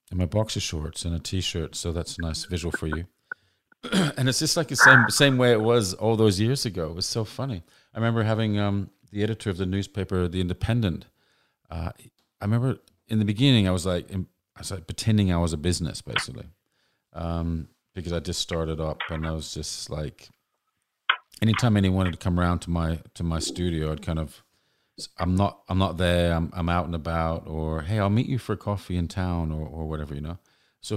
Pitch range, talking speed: 80-100 Hz, 215 wpm